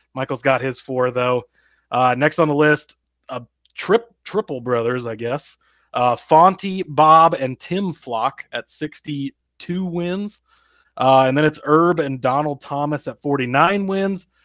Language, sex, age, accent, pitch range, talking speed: English, male, 30-49, American, 130-160 Hz, 145 wpm